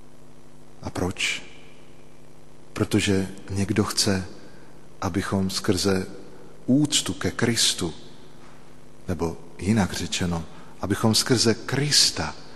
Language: Slovak